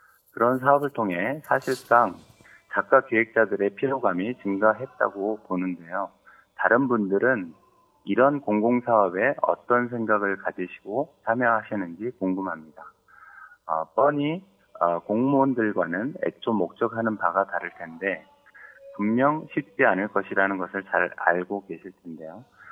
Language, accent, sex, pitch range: Korean, native, male, 95-125 Hz